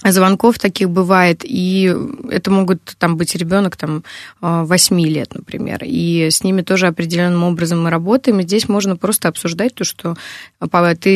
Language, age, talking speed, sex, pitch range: Russian, 20-39, 155 wpm, female, 170-200 Hz